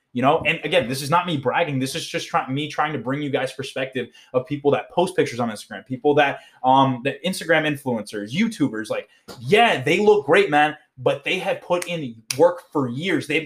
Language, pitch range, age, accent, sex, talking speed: English, 140-170 Hz, 20-39, American, male, 220 wpm